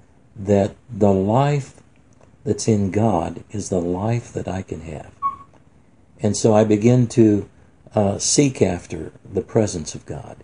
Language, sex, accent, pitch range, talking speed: English, male, American, 90-115 Hz, 145 wpm